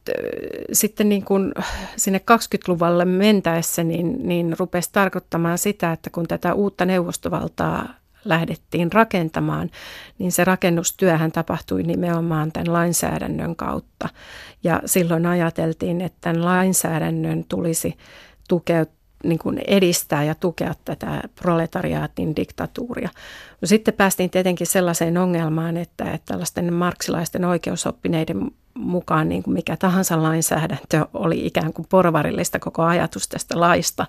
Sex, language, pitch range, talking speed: female, Finnish, 165-200 Hz, 115 wpm